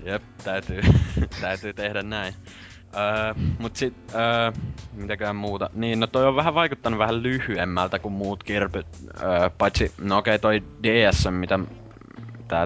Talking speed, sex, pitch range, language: 145 wpm, male, 90-110 Hz, Finnish